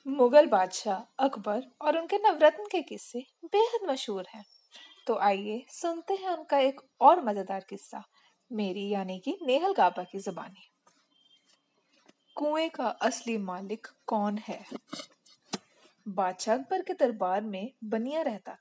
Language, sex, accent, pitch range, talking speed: Hindi, female, native, 215-310 Hz, 130 wpm